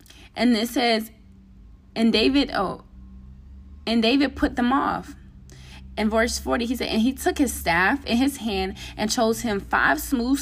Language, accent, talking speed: English, American, 165 wpm